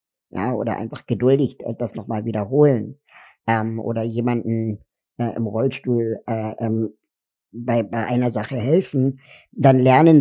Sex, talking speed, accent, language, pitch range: male, 125 wpm, German, German, 115-135 Hz